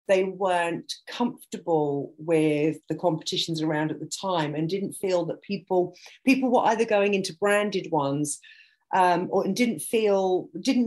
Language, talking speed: English, 145 wpm